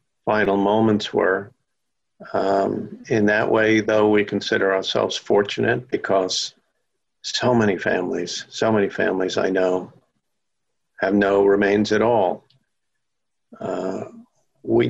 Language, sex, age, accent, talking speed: English, male, 50-69, American, 115 wpm